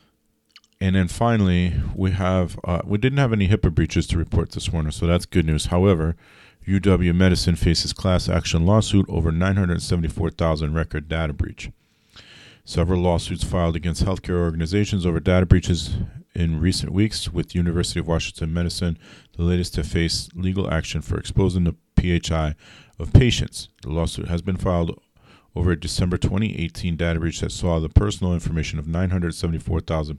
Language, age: English, 40-59